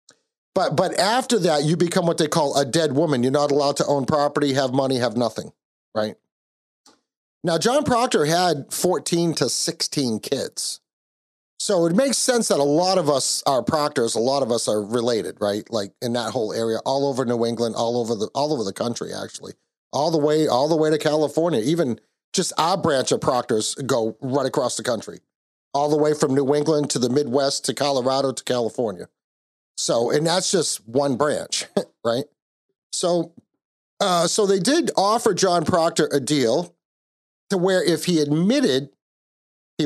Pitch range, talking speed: 125-170 Hz, 180 wpm